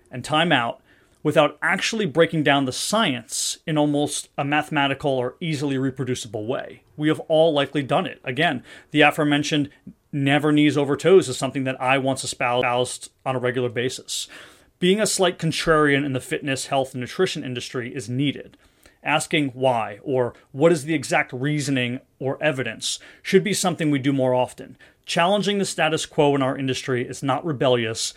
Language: English